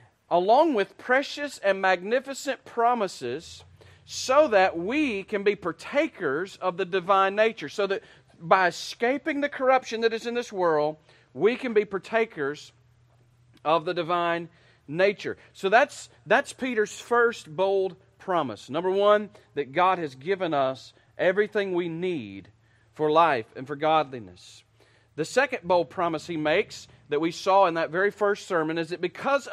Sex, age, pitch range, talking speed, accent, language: male, 40-59, 145-225 Hz, 150 wpm, American, English